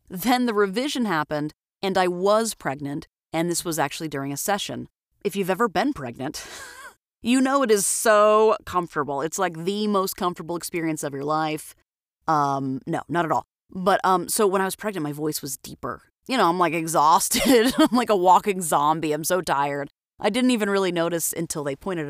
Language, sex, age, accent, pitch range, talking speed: English, female, 30-49, American, 155-220 Hz, 195 wpm